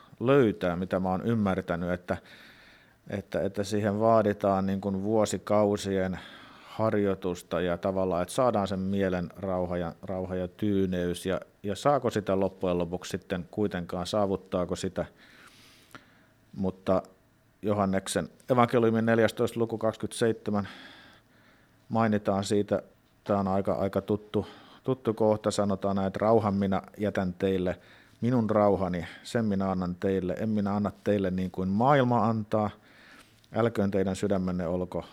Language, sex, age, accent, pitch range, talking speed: Finnish, male, 50-69, native, 95-110 Hz, 125 wpm